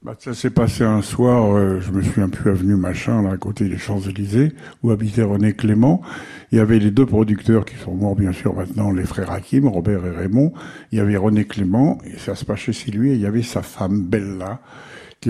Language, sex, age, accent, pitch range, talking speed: French, male, 70-89, French, 100-130 Hz, 240 wpm